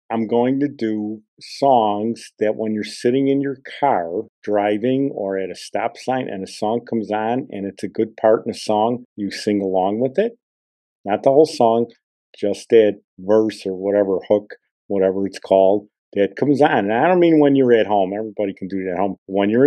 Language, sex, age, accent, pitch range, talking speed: English, male, 50-69, American, 100-125 Hz, 205 wpm